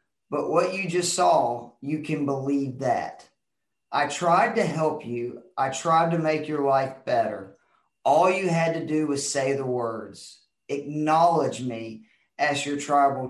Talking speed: 160 wpm